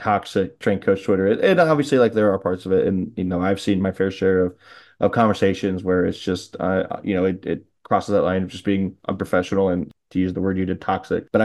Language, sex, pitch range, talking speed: English, male, 95-100 Hz, 245 wpm